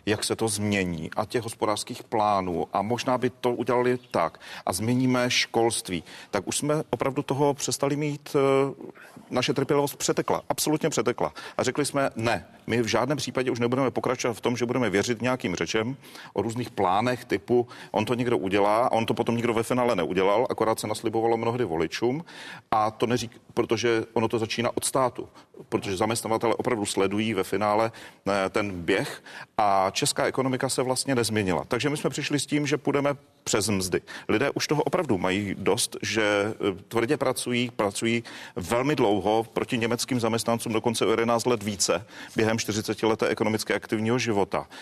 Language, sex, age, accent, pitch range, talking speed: Czech, male, 40-59, native, 110-130 Hz, 170 wpm